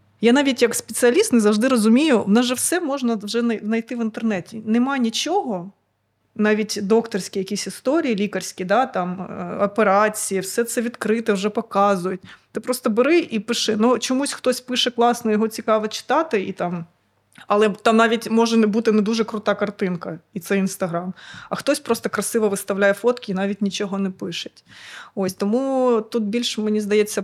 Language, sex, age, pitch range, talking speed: Ukrainian, female, 20-39, 200-235 Hz, 165 wpm